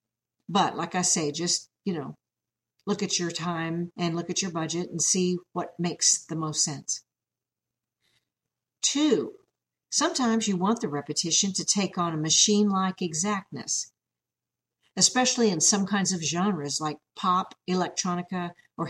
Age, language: 50-69, English